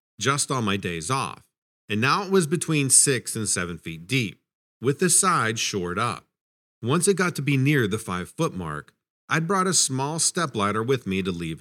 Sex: male